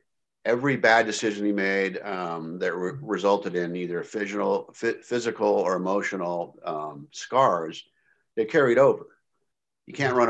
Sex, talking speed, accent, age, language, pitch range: male, 140 wpm, American, 50-69, English, 95-120 Hz